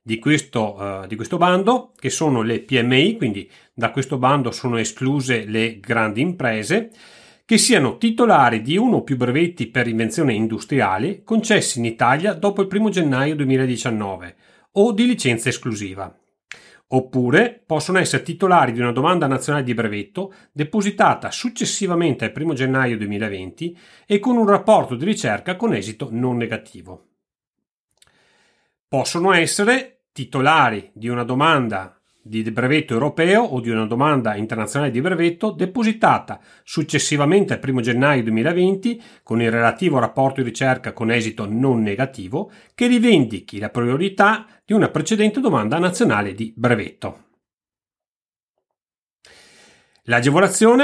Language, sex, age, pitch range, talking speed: Italian, male, 40-59, 115-195 Hz, 130 wpm